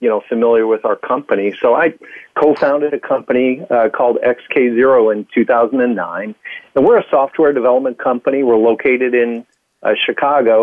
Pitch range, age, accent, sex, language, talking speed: 115-140 Hz, 50-69, American, male, English, 160 wpm